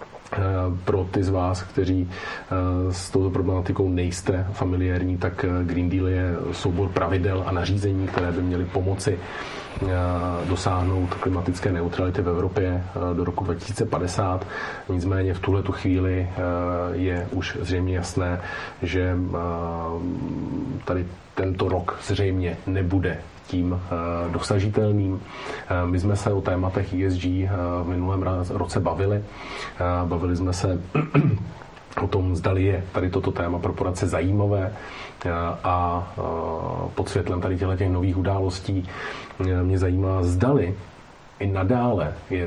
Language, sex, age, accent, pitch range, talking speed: Czech, male, 40-59, native, 90-95 Hz, 115 wpm